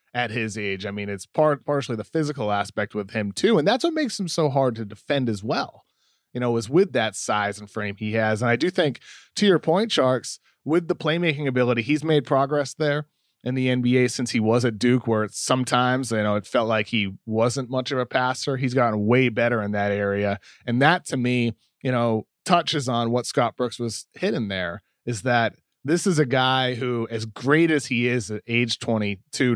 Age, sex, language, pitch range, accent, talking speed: 30-49, male, English, 110-135 Hz, American, 220 wpm